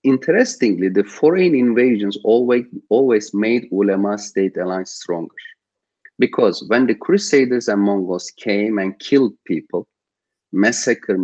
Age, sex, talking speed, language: 40-59, male, 115 wpm, English